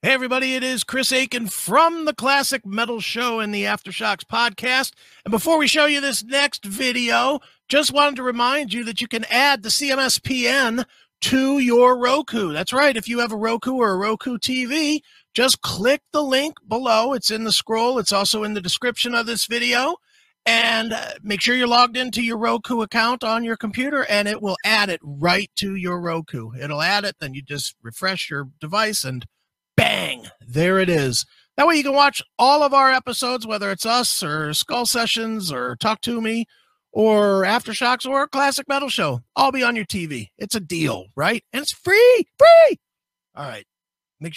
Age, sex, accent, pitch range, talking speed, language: 40-59, male, American, 195-265 Hz, 190 wpm, English